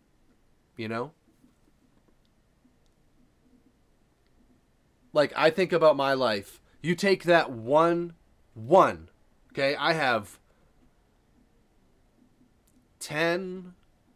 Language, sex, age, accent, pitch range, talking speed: English, male, 30-49, American, 130-185 Hz, 70 wpm